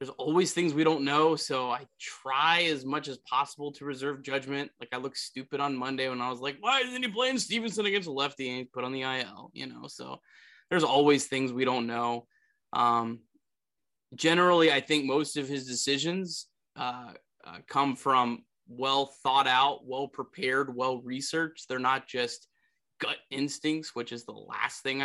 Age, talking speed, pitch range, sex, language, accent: 20-39, 180 wpm, 130-155 Hz, male, English, American